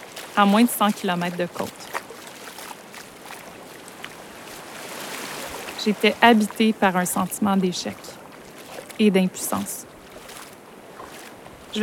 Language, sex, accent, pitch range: French, female, Canadian, 195-235 Hz